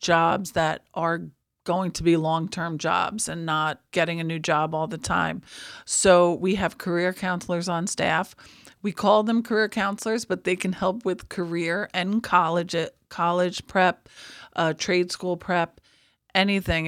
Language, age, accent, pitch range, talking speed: English, 40-59, American, 165-190 Hz, 155 wpm